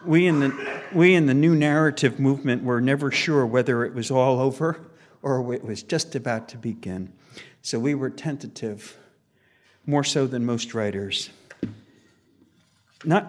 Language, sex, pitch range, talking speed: English, male, 110-140 Hz, 145 wpm